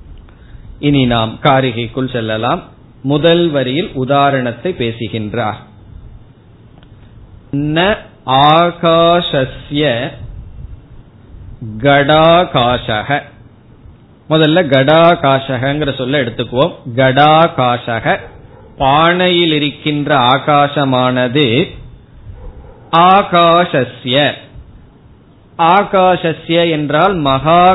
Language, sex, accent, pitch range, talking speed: Tamil, male, native, 125-155 Hz, 40 wpm